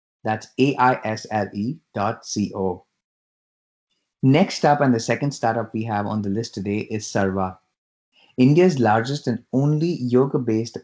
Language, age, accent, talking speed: English, 20-39, Indian, 125 wpm